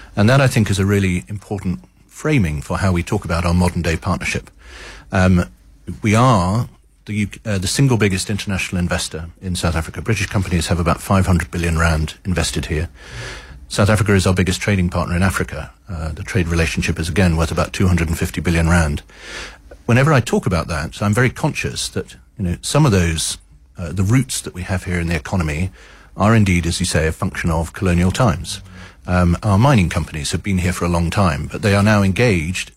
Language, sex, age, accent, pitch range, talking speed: English, male, 40-59, British, 85-105 Hz, 200 wpm